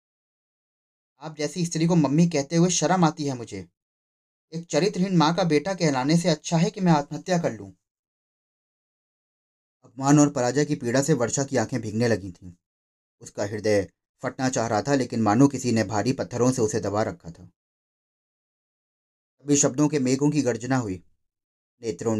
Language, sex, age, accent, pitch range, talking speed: Hindi, male, 30-49, native, 120-170 Hz, 170 wpm